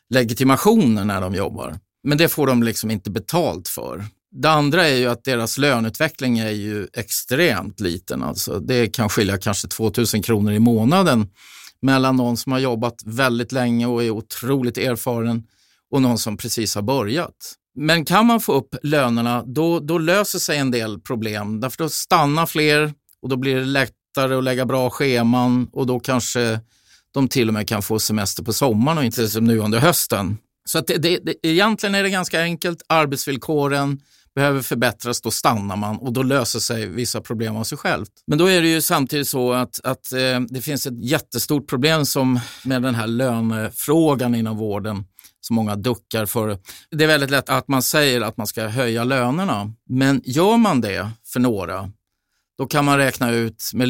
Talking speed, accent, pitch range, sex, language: 185 wpm, native, 110-140 Hz, male, Swedish